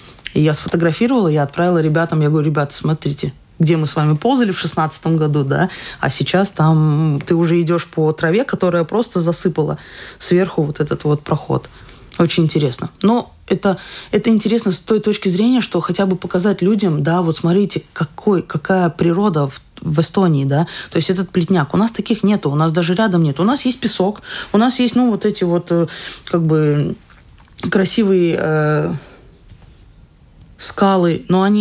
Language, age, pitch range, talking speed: Russian, 20-39, 155-190 Hz, 175 wpm